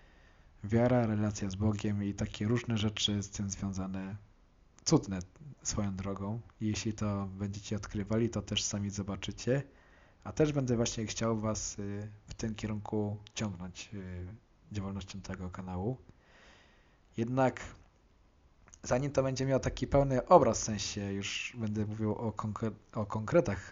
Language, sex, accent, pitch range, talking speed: Polish, male, native, 100-120 Hz, 130 wpm